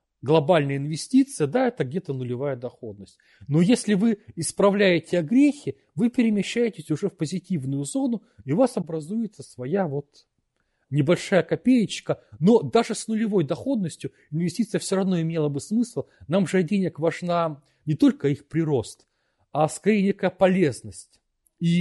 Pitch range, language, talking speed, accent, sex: 140-200 Hz, Russian, 140 wpm, native, male